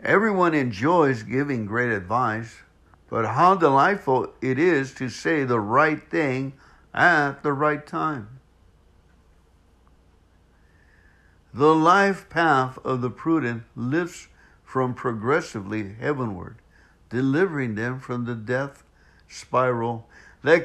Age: 60-79